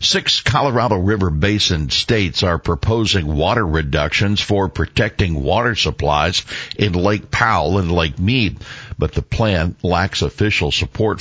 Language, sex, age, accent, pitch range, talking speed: English, male, 60-79, American, 80-105 Hz, 135 wpm